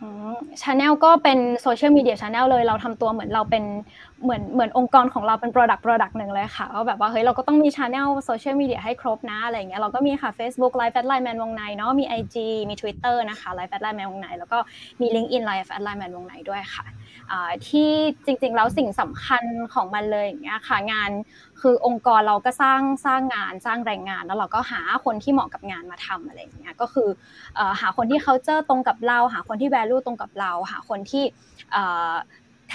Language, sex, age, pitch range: Thai, female, 20-39, 205-255 Hz